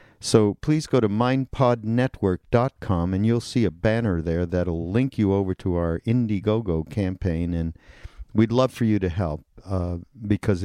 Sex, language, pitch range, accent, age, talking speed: male, English, 90-115 Hz, American, 50-69, 160 wpm